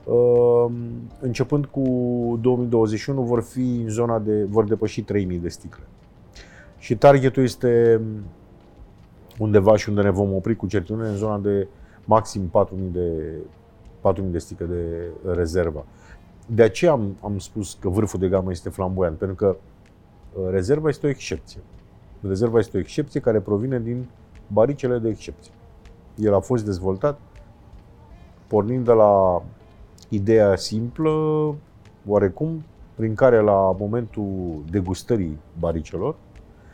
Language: Romanian